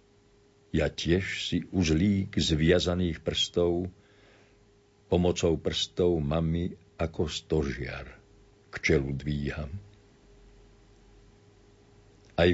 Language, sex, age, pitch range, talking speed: Slovak, male, 50-69, 80-100 Hz, 70 wpm